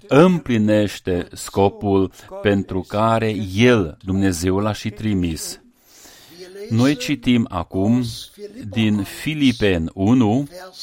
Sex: male